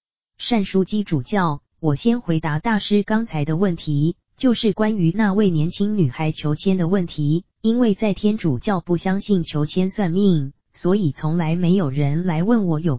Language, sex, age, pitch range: Chinese, female, 20-39, 155-205 Hz